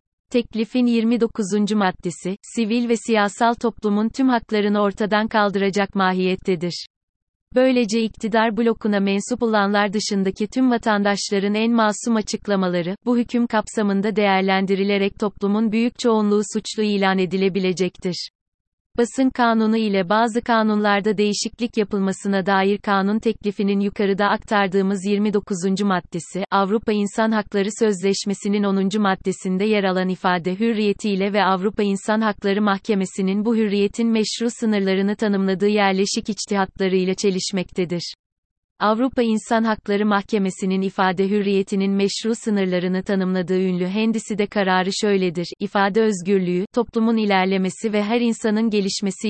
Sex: female